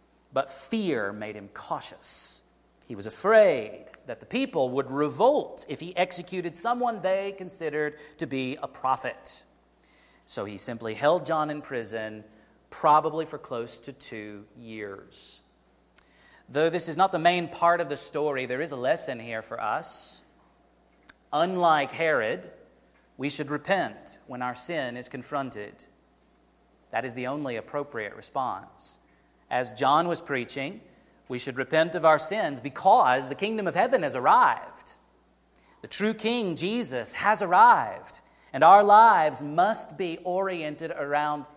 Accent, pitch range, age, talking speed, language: American, 130-185 Hz, 40-59, 145 wpm, English